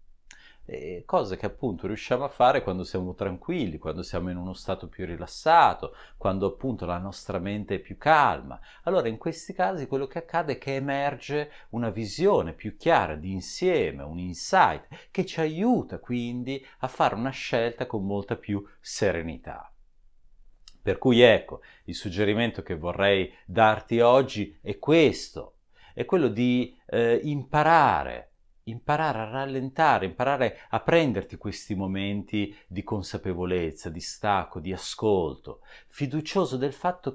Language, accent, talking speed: Italian, native, 140 wpm